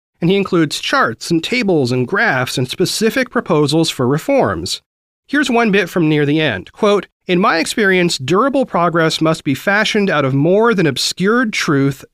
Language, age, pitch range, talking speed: English, 40-59, 145-200 Hz, 175 wpm